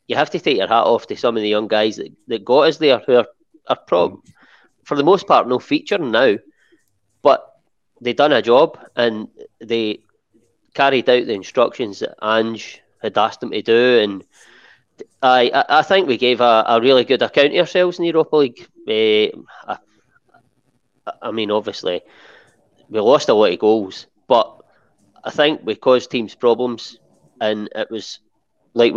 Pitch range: 110-150 Hz